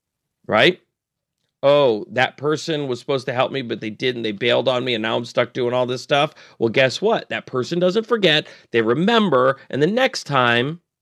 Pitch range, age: 120-180 Hz, 40-59